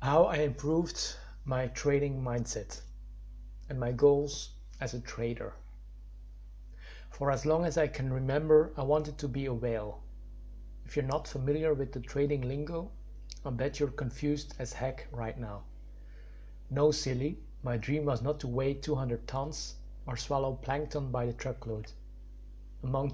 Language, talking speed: English, 150 wpm